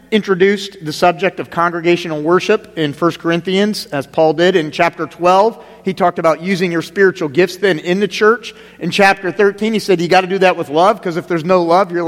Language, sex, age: English, male, 40-59